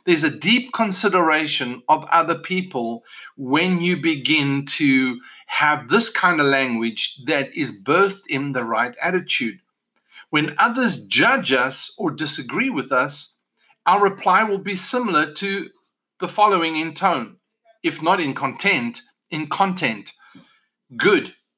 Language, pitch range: English, 150-215 Hz